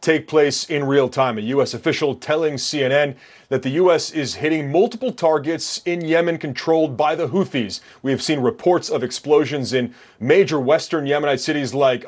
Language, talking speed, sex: English, 175 wpm, male